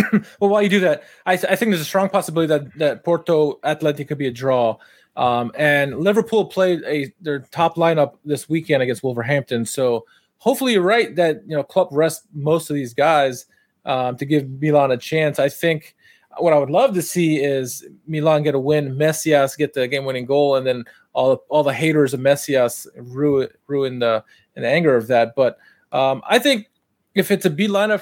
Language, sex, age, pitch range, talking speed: English, male, 20-39, 140-185 Hz, 205 wpm